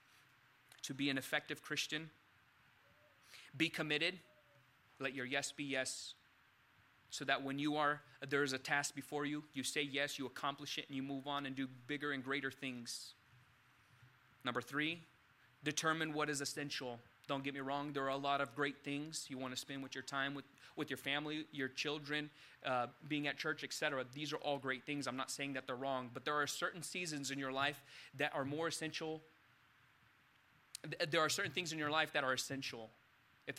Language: English